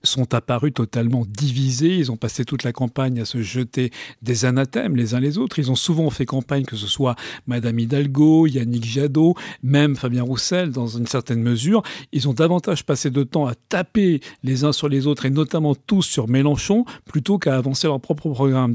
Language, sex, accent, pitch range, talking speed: French, male, French, 125-155 Hz, 200 wpm